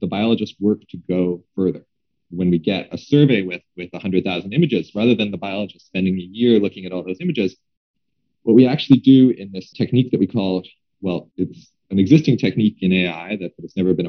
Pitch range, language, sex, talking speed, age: 95-130 Hz, English, male, 210 wpm, 30-49